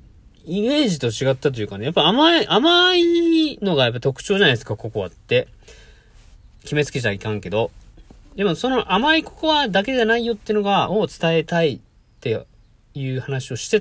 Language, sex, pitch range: Japanese, male, 115-185 Hz